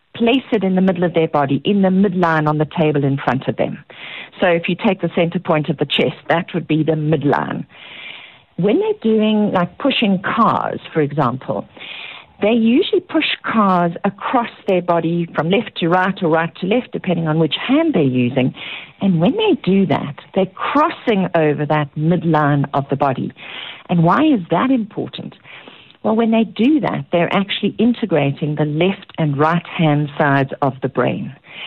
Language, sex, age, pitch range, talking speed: English, female, 50-69, 150-210 Hz, 180 wpm